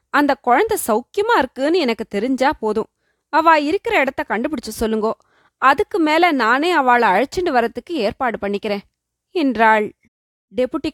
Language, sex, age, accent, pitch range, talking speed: Tamil, female, 20-39, native, 230-310 Hz, 120 wpm